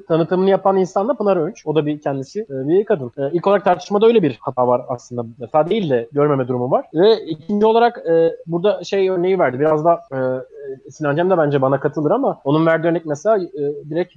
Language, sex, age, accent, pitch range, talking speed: Turkish, male, 30-49, native, 135-185 Hz, 205 wpm